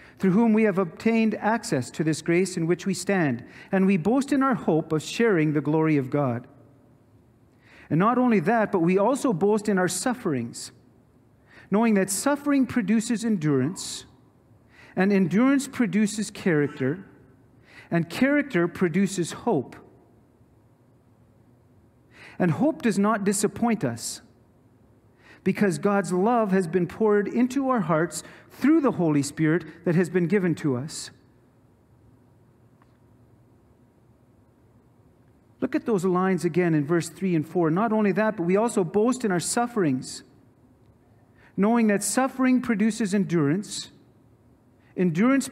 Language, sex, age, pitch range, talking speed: English, male, 40-59, 125-205 Hz, 130 wpm